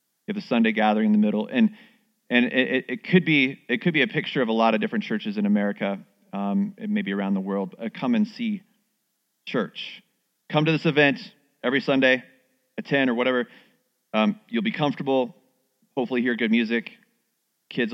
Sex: male